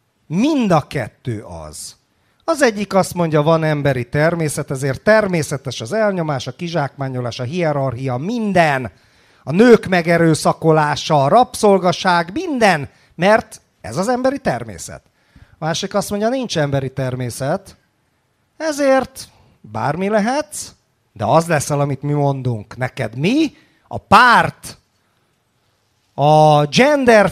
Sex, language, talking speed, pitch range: male, Hungarian, 115 wpm, 130-205 Hz